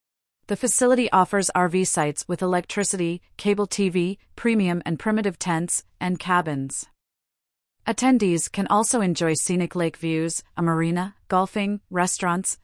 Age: 30-49